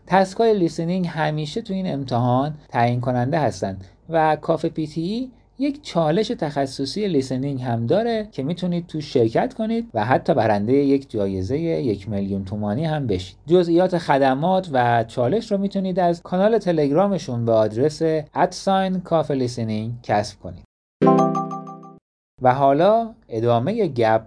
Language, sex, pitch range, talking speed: Persian, male, 105-160 Hz, 125 wpm